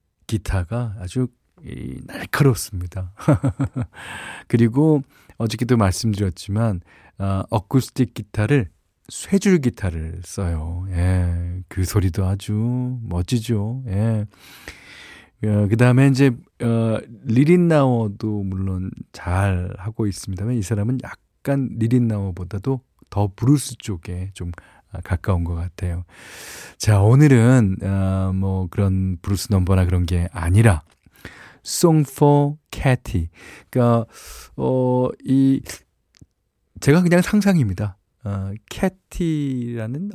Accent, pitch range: native, 95-125 Hz